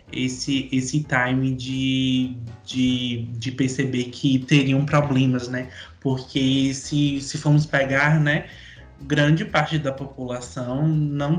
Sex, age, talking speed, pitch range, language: male, 20-39, 115 wpm, 125-145 Hz, Portuguese